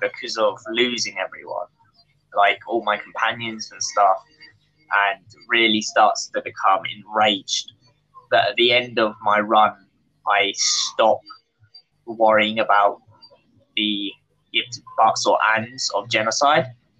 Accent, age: British, 10-29